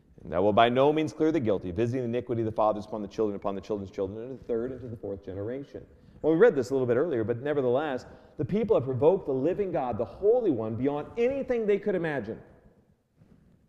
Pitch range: 115-150 Hz